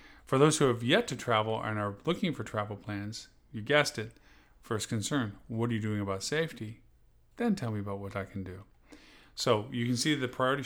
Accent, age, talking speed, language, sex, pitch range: American, 40-59, 220 wpm, English, male, 105-135 Hz